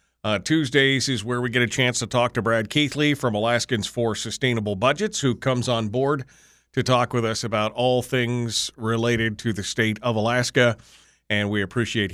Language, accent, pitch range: English, American, 105-130 Hz